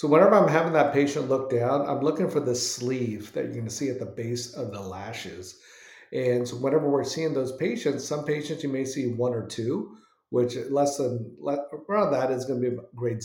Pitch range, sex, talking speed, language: 115-145 Hz, male, 220 wpm, English